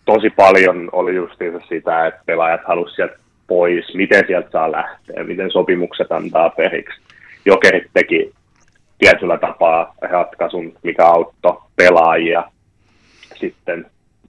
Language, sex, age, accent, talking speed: Finnish, male, 30-49, native, 115 wpm